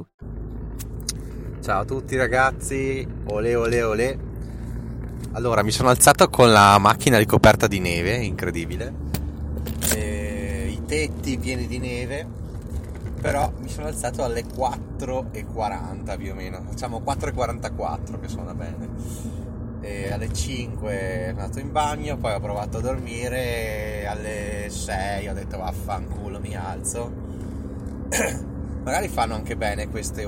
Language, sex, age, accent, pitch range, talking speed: Italian, male, 20-39, native, 95-115 Hz, 130 wpm